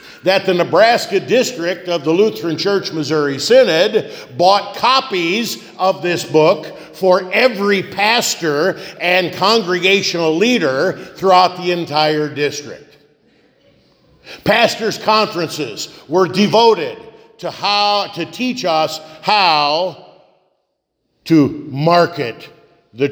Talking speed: 100 wpm